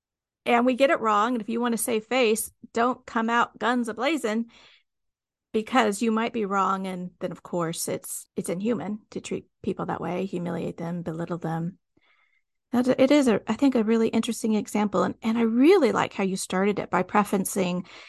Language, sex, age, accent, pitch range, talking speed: English, female, 40-59, American, 200-250 Hz, 200 wpm